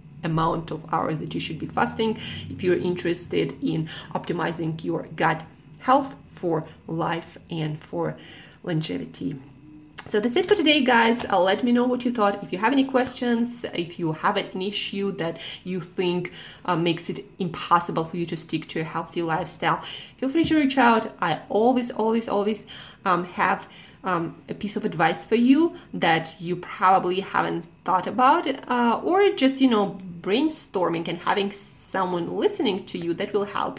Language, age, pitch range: English, 30-49, 165-220 Hz